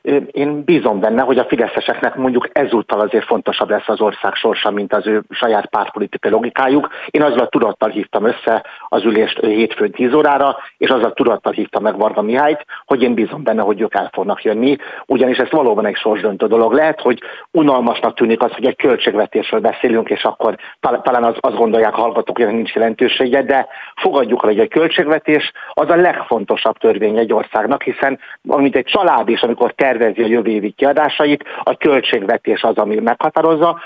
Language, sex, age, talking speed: Hungarian, male, 60-79, 175 wpm